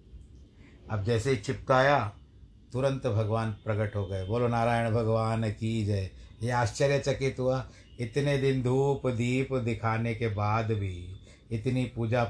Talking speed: 130 wpm